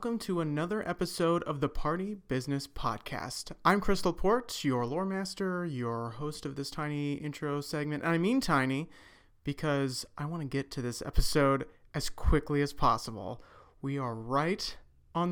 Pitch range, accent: 135-175 Hz, American